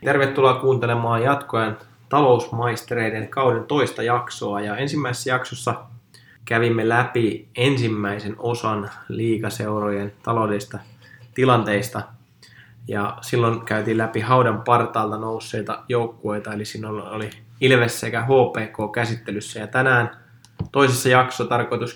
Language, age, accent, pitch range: Finnish, 20-39, native, 110-120 Hz